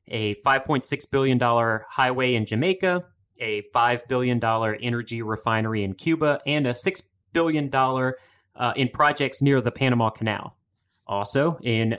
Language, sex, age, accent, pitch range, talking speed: English, male, 30-49, American, 115-145 Hz, 130 wpm